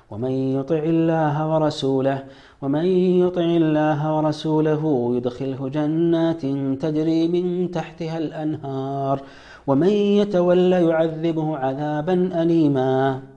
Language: Amharic